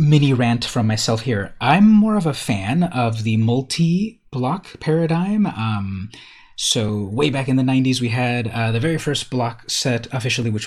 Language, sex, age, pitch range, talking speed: English, male, 30-49, 110-145 Hz, 175 wpm